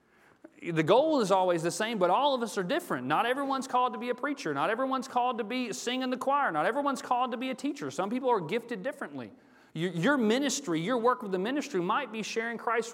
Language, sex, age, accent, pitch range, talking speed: English, male, 40-59, American, 200-250 Hz, 230 wpm